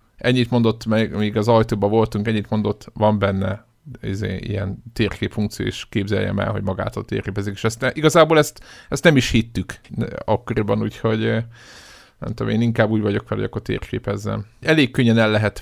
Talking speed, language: 170 wpm, Hungarian